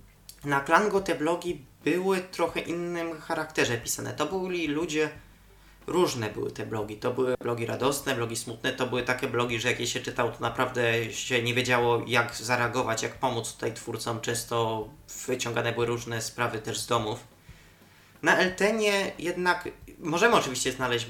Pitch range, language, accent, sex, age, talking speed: 115-150 Hz, Polish, native, male, 20-39, 160 wpm